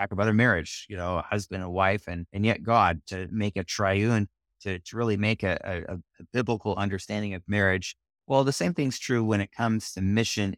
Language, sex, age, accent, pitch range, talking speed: English, male, 30-49, American, 95-115 Hz, 215 wpm